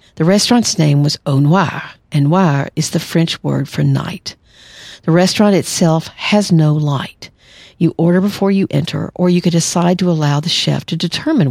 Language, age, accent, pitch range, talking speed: English, 50-69, American, 150-180 Hz, 180 wpm